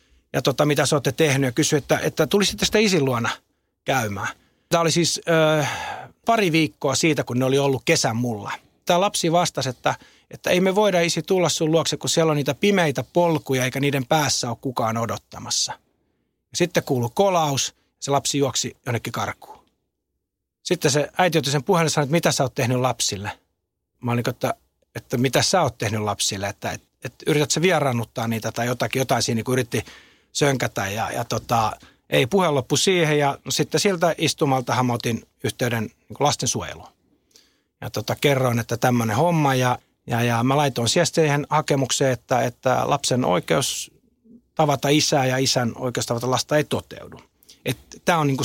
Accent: native